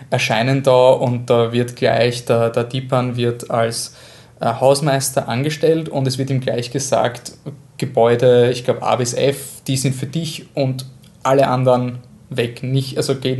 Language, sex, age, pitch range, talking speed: German, male, 20-39, 120-135 Hz, 155 wpm